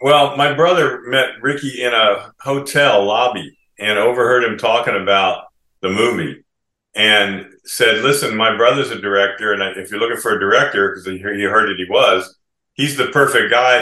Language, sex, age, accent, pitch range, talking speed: English, male, 40-59, American, 95-115 Hz, 180 wpm